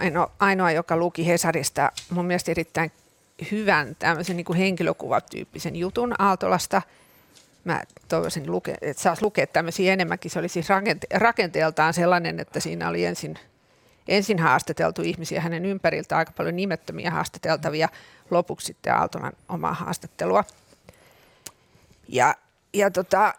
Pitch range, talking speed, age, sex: 170-200 Hz, 115 wpm, 50-69, female